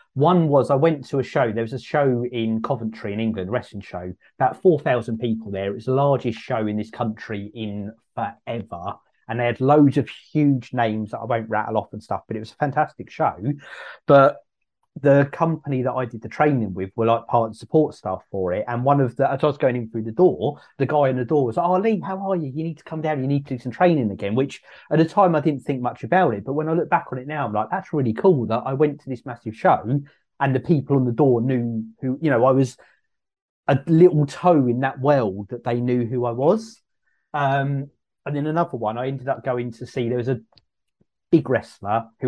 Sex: male